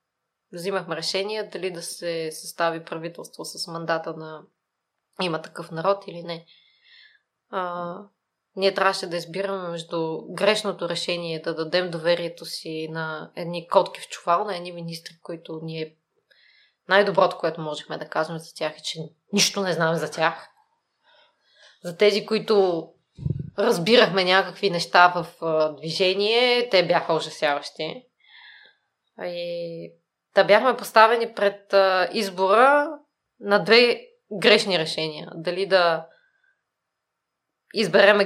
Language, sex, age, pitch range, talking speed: Bulgarian, female, 20-39, 165-205 Hz, 120 wpm